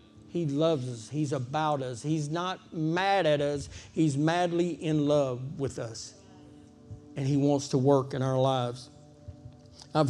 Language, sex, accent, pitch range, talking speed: English, male, American, 130-185 Hz, 155 wpm